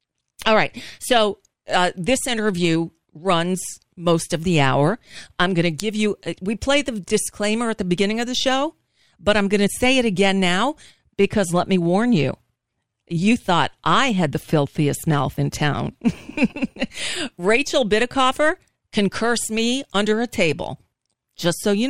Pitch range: 150-225 Hz